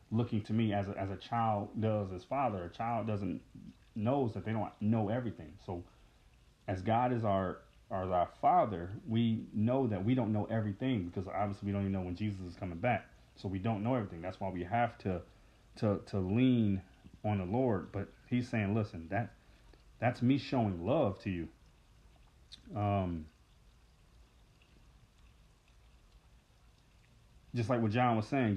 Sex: male